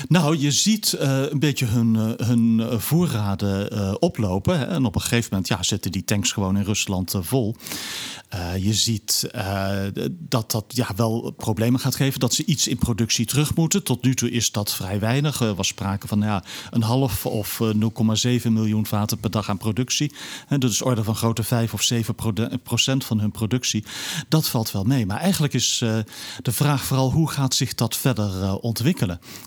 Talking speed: 180 wpm